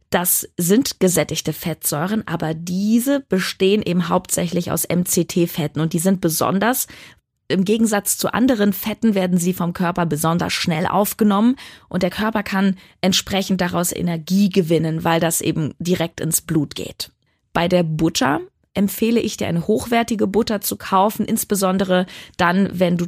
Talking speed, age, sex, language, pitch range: 150 wpm, 20-39, female, German, 170-205 Hz